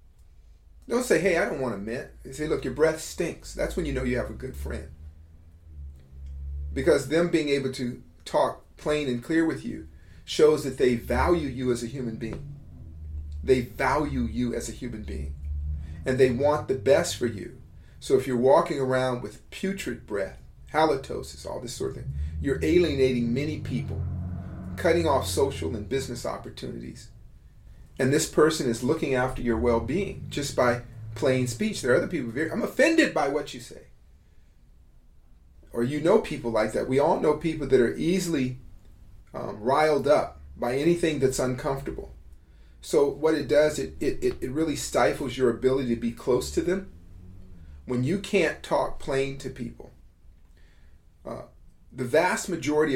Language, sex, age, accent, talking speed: English, male, 40-59, American, 170 wpm